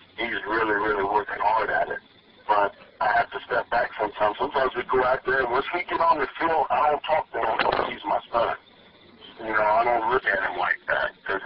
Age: 50-69